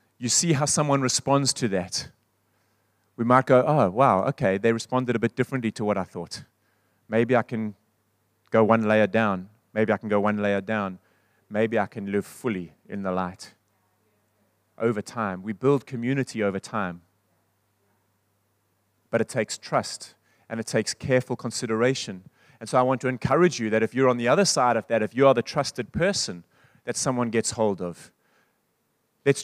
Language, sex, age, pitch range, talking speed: English, male, 30-49, 105-130 Hz, 180 wpm